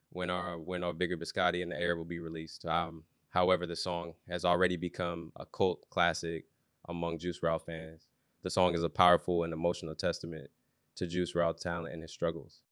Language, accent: English, American